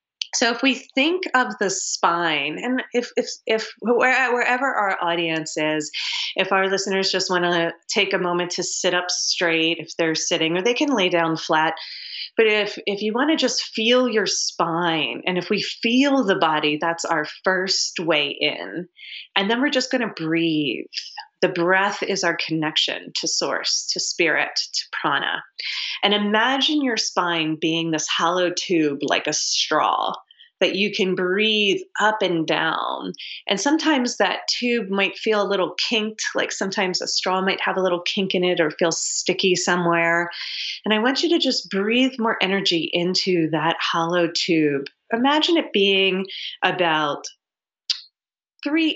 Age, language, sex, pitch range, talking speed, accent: 30-49, English, female, 170-230 Hz, 165 wpm, American